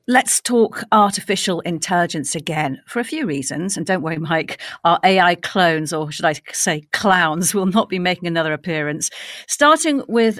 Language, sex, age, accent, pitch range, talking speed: English, female, 50-69, British, 160-225 Hz, 165 wpm